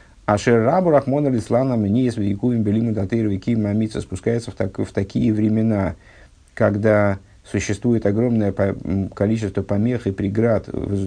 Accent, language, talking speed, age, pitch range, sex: native, Russian, 70 wpm, 50-69, 100-115 Hz, male